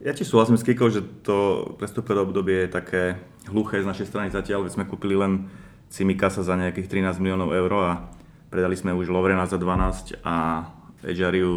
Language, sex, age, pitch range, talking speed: Slovak, male, 30-49, 90-100 Hz, 180 wpm